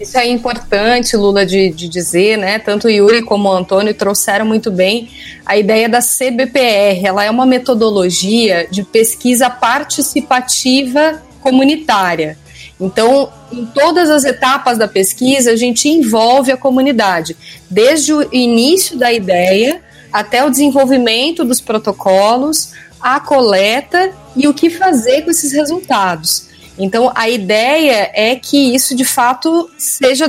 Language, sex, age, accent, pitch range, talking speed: Portuguese, female, 30-49, Brazilian, 210-275 Hz, 135 wpm